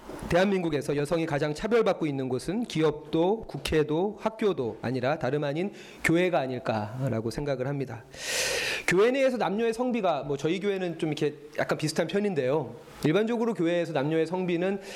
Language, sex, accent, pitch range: Korean, male, native, 130-180 Hz